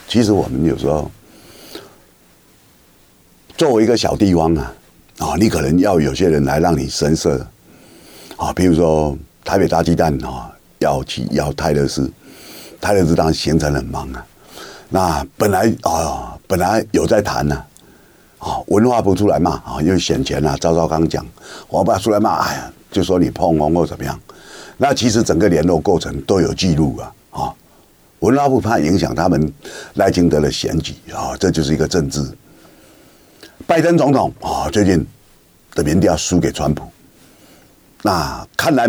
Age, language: 50-69, Chinese